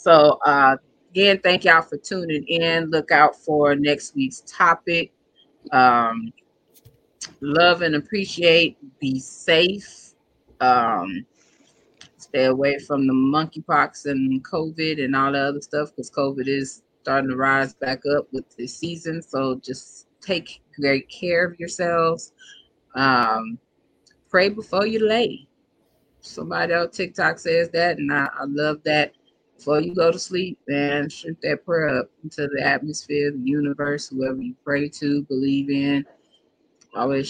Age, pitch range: 20-39, 135-165 Hz